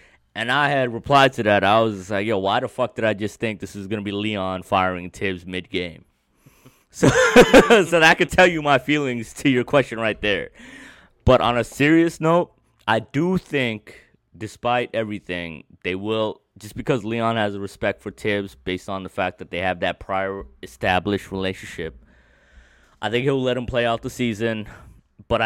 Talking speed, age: 185 wpm, 20-39